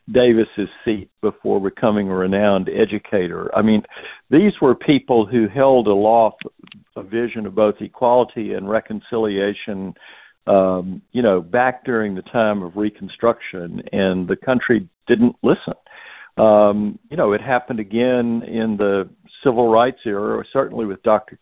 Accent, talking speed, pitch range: American, 140 wpm, 100-115 Hz